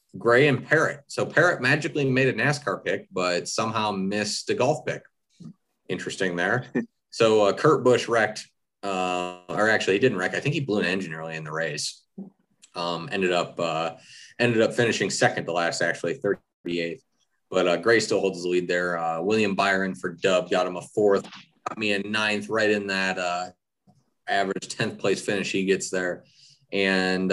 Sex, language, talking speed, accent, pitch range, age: male, English, 185 wpm, American, 90-110 Hz, 30-49